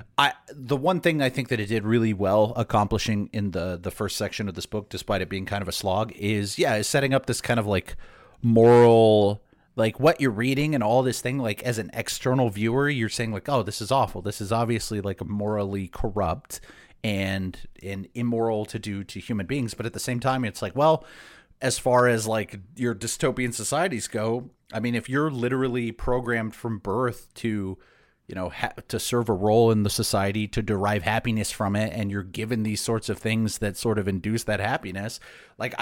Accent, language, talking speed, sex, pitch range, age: American, English, 210 wpm, male, 105-120 Hz, 30-49